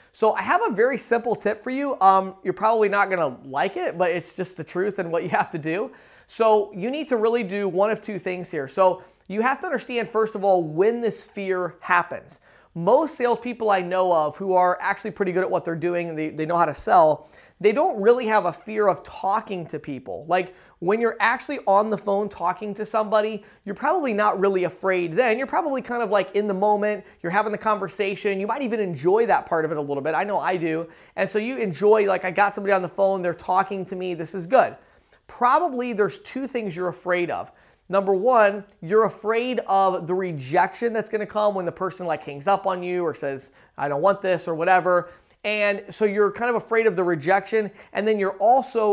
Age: 30-49